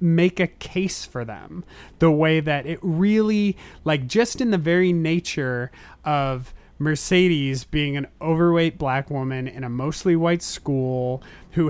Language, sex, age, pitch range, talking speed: English, male, 30-49, 150-185 Hz, 150 wpm